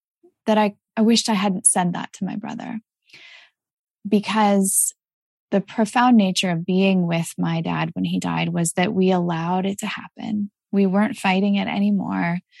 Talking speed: 165 wpm